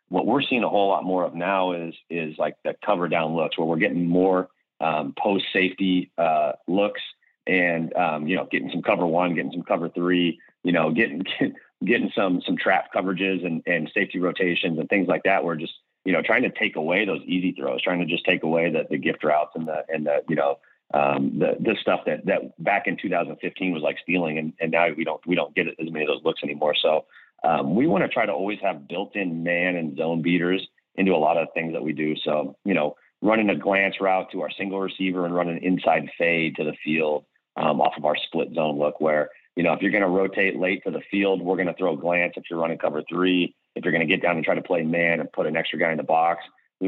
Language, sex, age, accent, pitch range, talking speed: English, male, 30-49, American, 75-90 Hz, 255 wpm